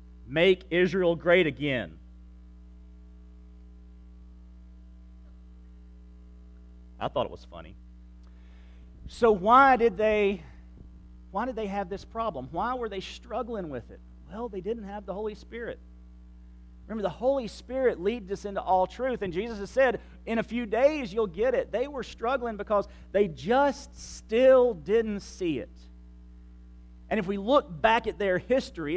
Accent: American